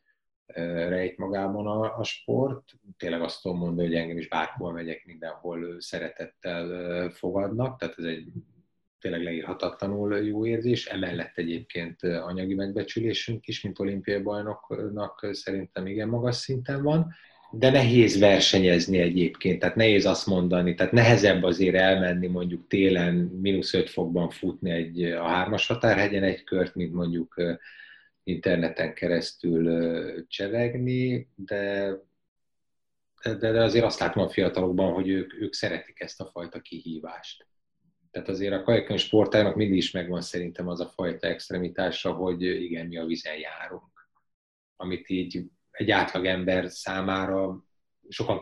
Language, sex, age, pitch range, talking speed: Hungarian, male, 30-49, 90-105 Hz, 135 wpm